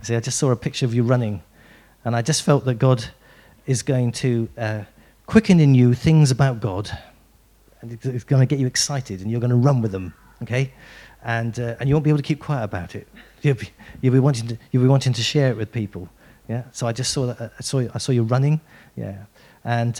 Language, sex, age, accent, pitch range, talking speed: English, male, 40-59, British, 110-135 Hz, 240 wpm